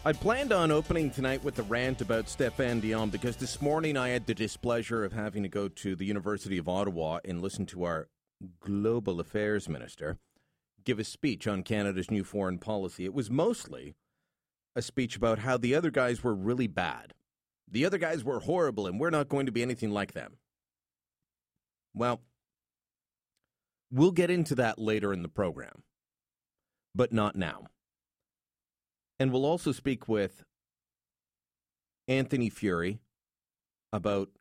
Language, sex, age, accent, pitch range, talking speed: English, male, 40-59, American, 80-120 Hz, 155 wpm